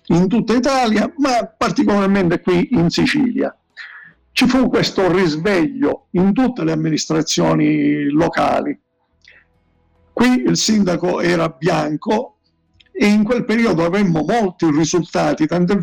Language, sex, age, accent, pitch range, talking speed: Italian, male, 50-69, native, 155-200 Hz, 115 wpm